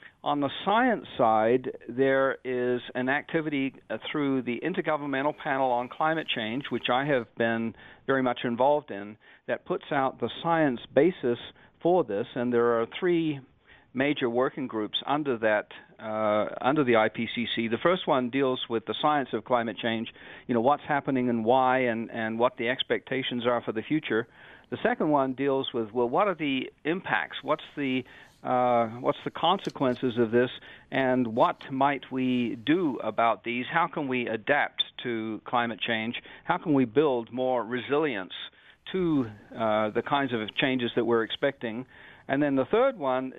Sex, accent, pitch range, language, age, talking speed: male, American, 120-145 Hz, English, 50-69, 165 wpm